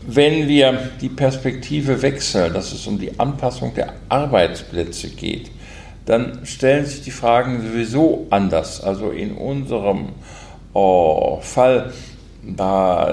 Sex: male